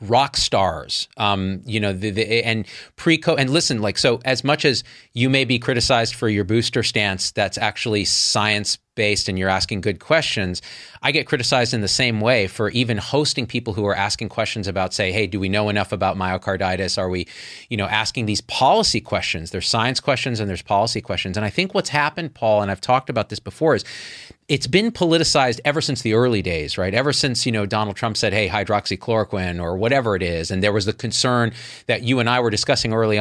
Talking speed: 215 wpm